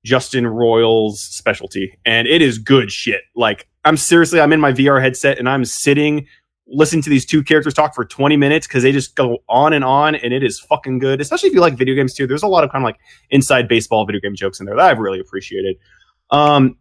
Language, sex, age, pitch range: English, male, 20-39, 115-145 Hz